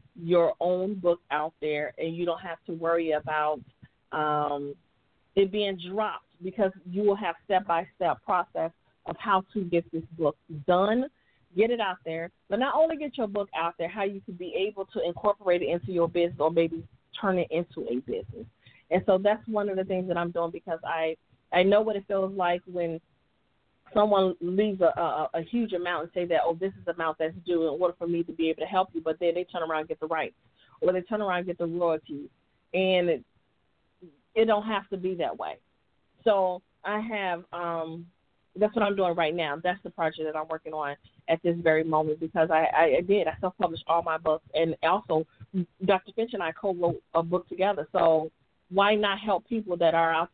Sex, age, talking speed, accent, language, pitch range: female, 40-59, 215 wpm, American, English, 160-195 Hz